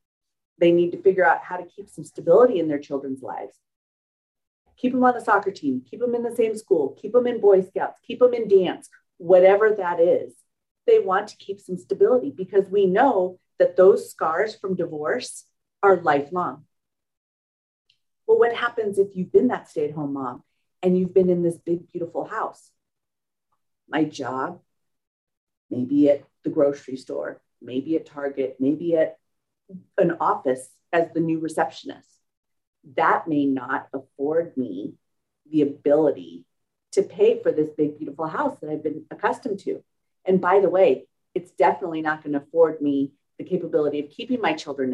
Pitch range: 145-195 Hz